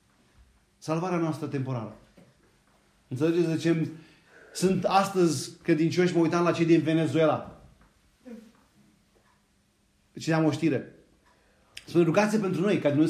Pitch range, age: 155-195 Hz, 30-49